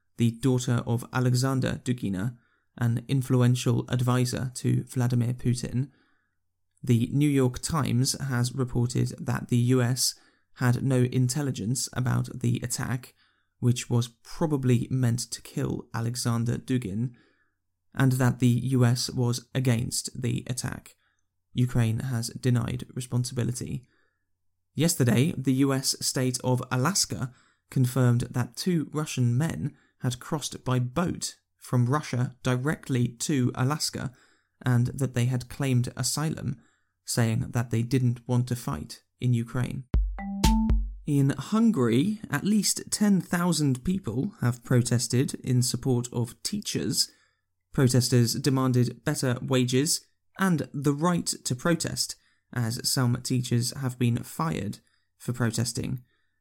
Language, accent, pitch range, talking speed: English, British, 120-135 Hz, 115 wpm